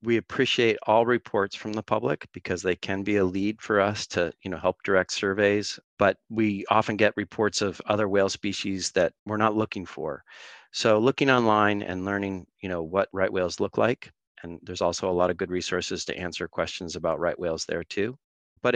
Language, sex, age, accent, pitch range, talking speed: English, male, 40-59, American, 90-110 Hz, 205 wpm